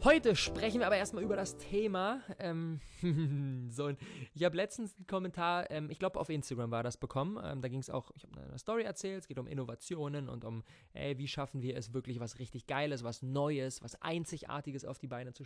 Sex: male